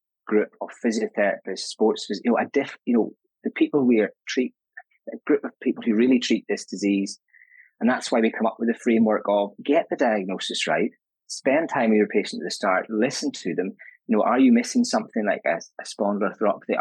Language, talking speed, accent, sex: English, 210 wpm, British, male